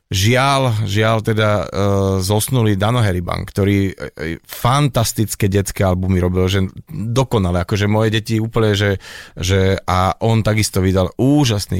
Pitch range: 100-110 Hz